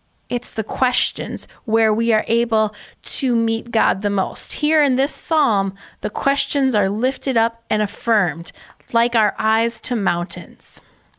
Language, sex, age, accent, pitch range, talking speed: English, female, 30-49, American, 215-275 Hz, 150 wpm